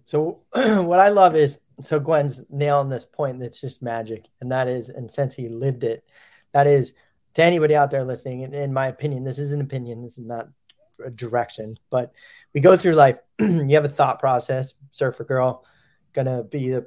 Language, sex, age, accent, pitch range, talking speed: English, male, 20-39, American, 130-155 Hz, 205 wpm